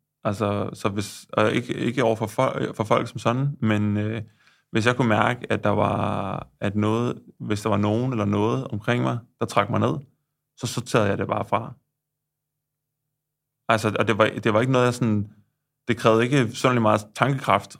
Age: 20-39